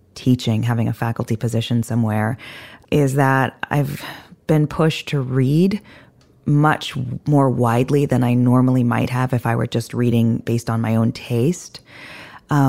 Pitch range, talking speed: 120-140 Hz, 145 wpm